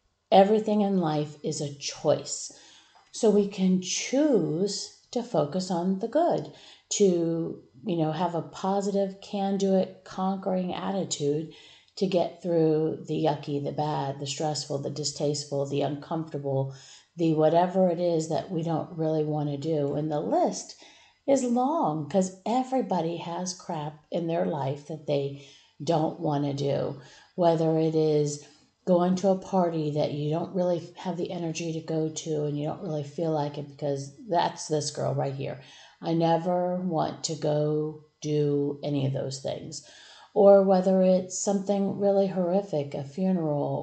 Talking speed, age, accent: 160 wpm, 50-69, American